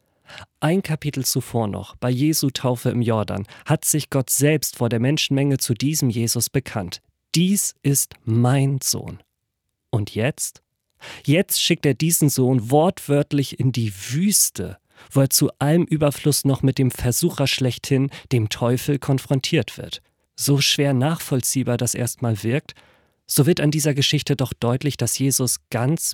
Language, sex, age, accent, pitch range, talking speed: German, male, 40-59, German, 120-150 Hz, 150 wpm